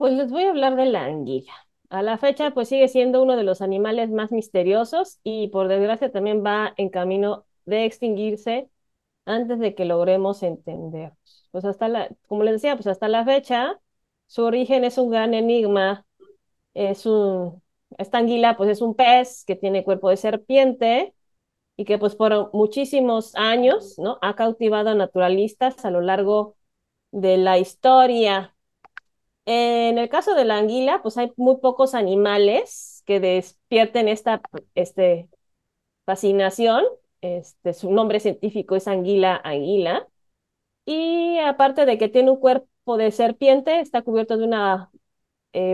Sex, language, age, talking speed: female, Spanish, 30-49, 150 wpm